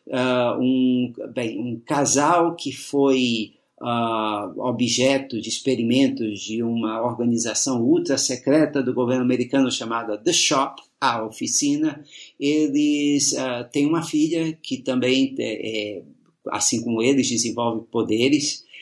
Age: 50-69